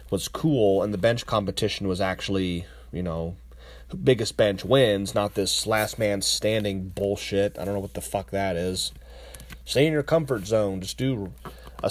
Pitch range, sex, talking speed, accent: 80-120 Hz, male, 175 wpm, American